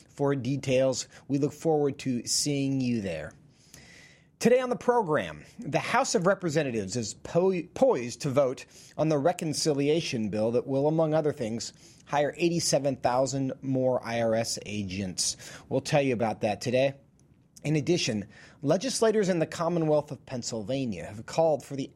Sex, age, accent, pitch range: male, 30-49, American, 125-180 Hz